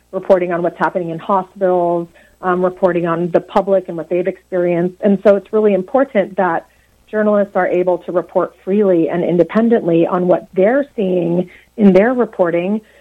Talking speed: 165 wpm